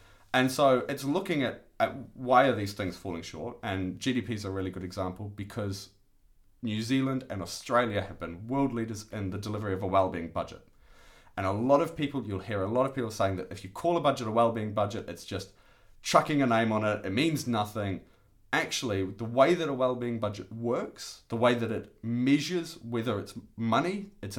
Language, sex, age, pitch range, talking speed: English, male, 30-49, 95-120 Hz, 205 wpm